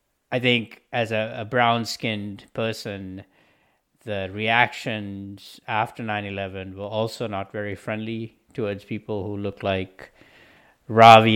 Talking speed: 115 wpm